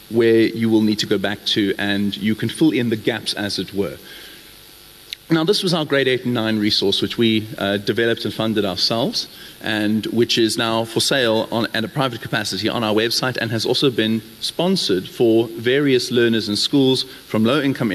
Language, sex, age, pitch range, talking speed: English, male, 40-59, 110-135 Hz, 200 wpm